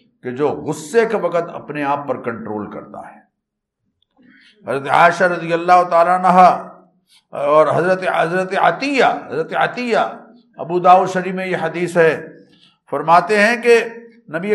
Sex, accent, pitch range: male, Indian, 165-235 Hz